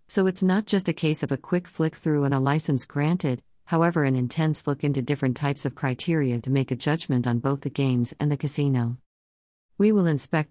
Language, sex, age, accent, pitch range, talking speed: English, female, 50-69, American, 130-155 Hz, 215 wpm